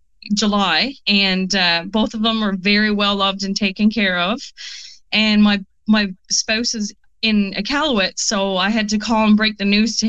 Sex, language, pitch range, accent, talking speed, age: female, English, 195-225 Hz, American, 185 wpm, 30-49